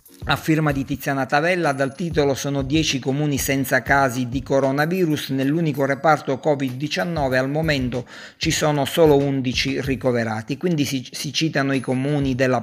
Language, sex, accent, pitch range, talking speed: Italian, male, native, 125-145 Hz, 145 wpm